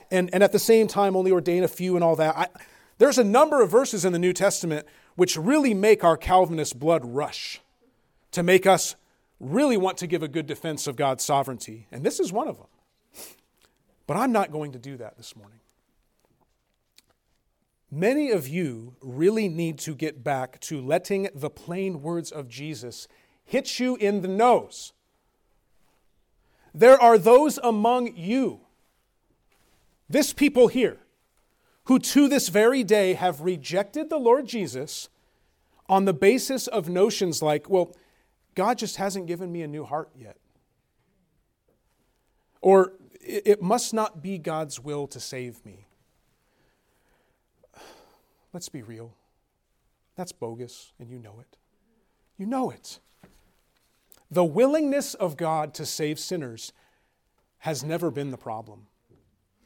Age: 40-59